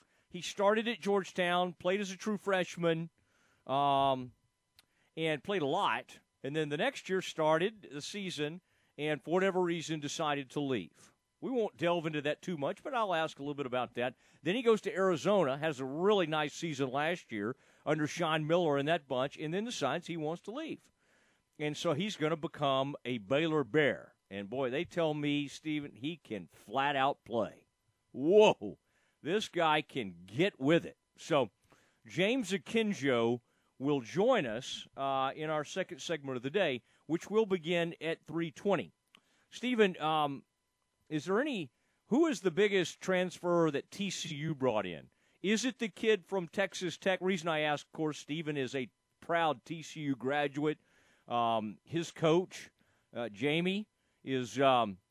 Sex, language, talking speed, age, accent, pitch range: male, English, 165 wpm, 40-59, American, 140-185 Hz